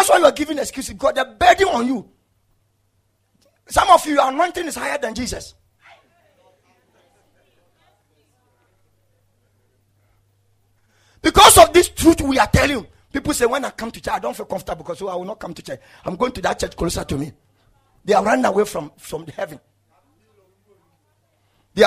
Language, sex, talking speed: English, male, 175 wpm